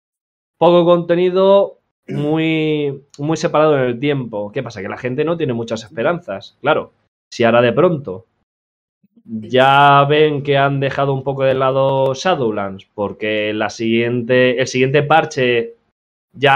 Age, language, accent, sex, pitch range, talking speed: 20-39, Spanish, Spanish, male, 130-170 Hz, 135 wpm